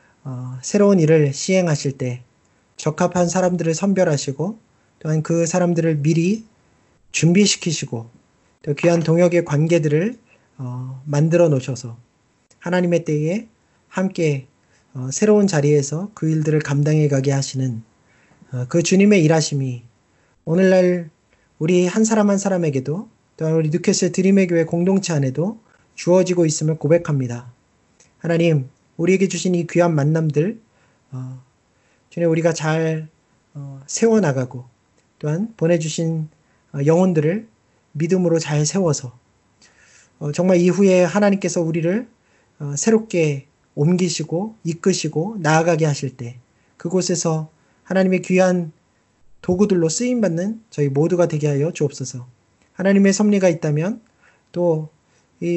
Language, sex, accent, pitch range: Korean, male, native, 145-185 Hz